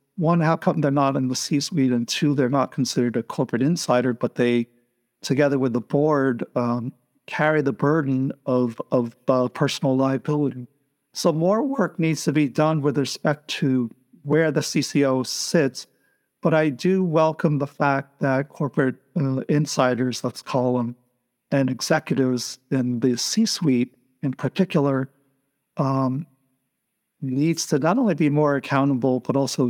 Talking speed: 150 wpm